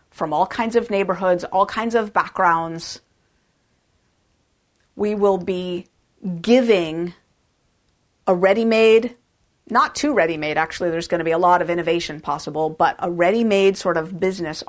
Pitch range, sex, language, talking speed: 165-215 Hz, female, English, 140 wpm